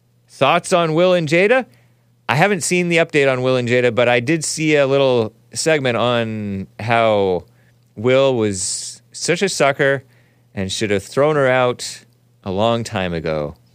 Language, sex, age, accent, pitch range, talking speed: English, male, 30-49, American, 105-130 Hz, 165 wpm